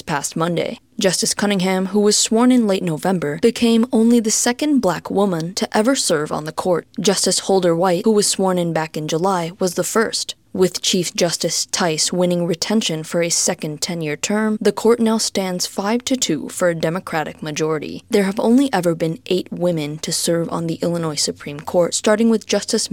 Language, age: English, 20-39